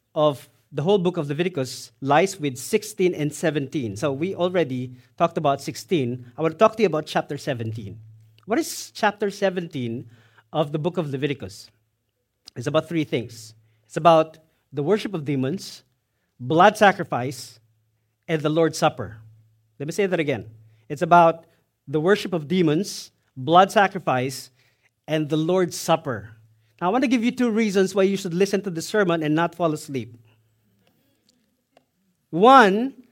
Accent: Filipino